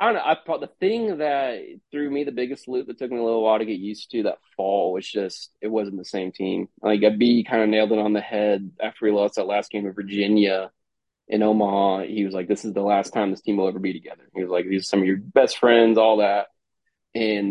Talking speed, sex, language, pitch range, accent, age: 270 wpm, male, English, 100-115 Hz, American, 20-39